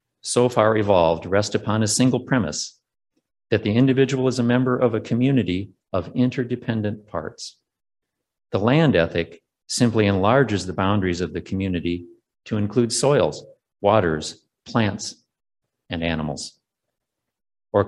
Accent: American